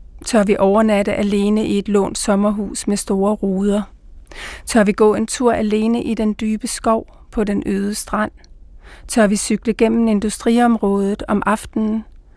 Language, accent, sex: Danish, native, female